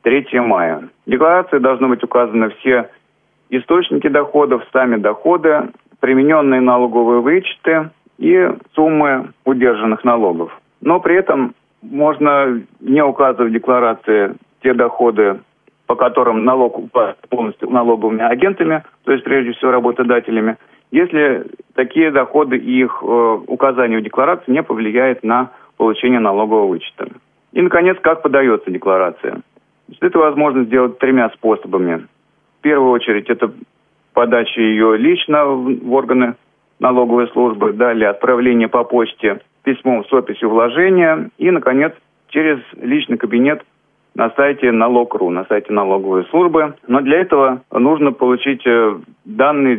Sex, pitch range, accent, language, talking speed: male, 115-145 Hz, native, Russian, 120 wpm